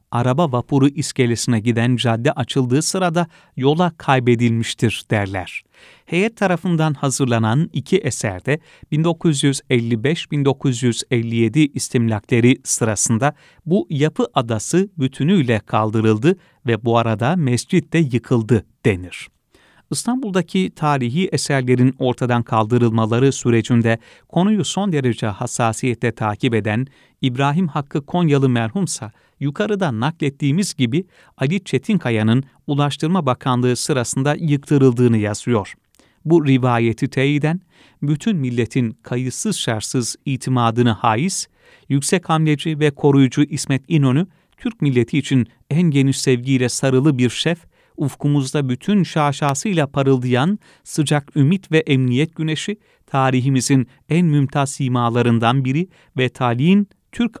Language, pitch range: Turkish, 125-155 Hz